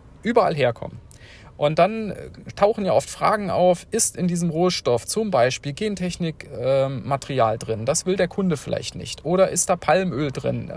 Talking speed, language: 160 wpm, German